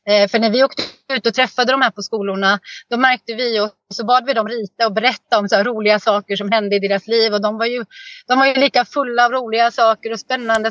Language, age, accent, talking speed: Swedish, 30-49, native, 250 wpm